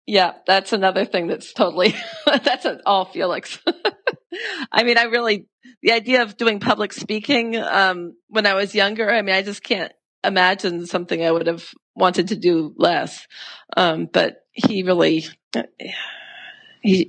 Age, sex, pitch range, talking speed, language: 40-59, female, 180-220 Hz, 150 wpm, English